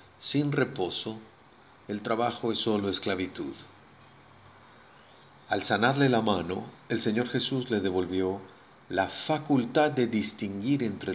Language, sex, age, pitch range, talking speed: Spanish, male, 40-59, 95-125 Hz, 115 wpm